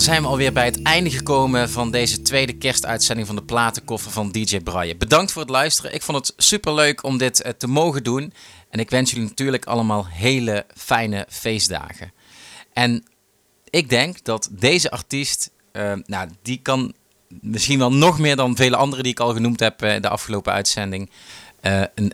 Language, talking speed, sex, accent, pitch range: Dutch, 185 wpm, male, Dutch, 100-130 Hz